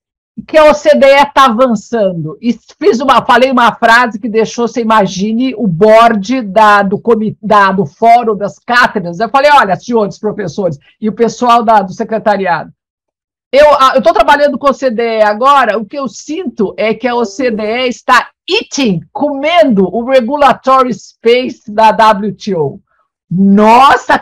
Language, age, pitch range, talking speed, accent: Portuguese, 50-69, 215-275 Hz, 140 wpm, Brazilian